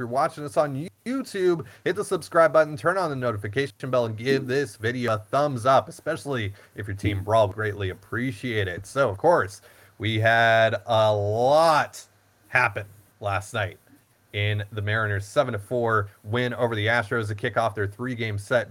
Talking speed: 175 wpm